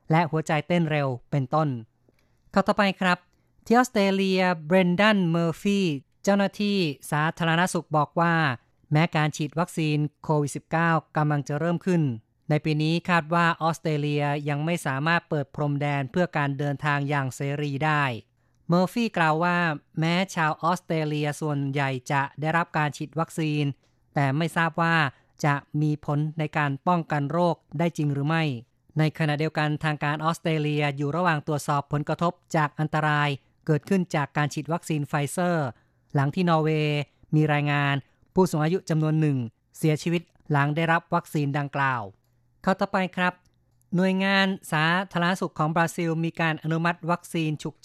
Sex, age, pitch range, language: female, 20-39, 145-170 Hz, Thai